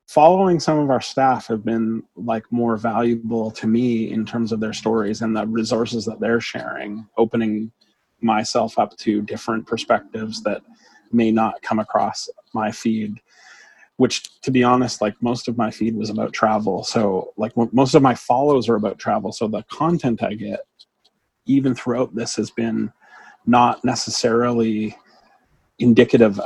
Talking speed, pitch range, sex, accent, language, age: 160 wpm, 110-130 Hz, male, American, English, 30-49